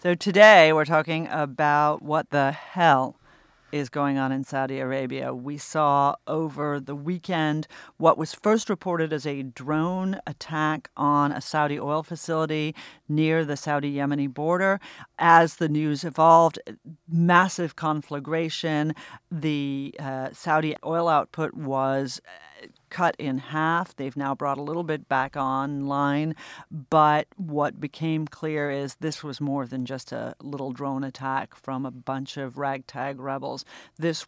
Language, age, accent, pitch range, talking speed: English, 40-59, American, 135-160 Hz, 140 wpm